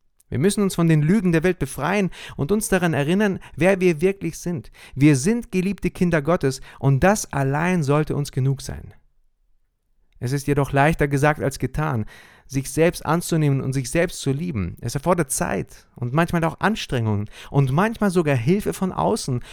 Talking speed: 175 wpm